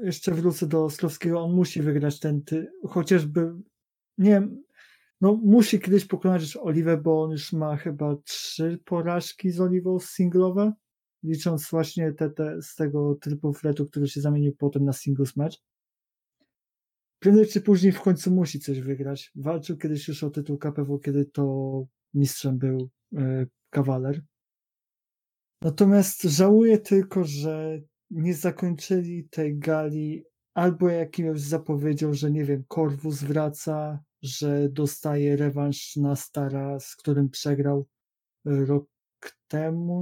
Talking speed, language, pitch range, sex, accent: 130 wpm, Polish, 145-175 Hz, male, native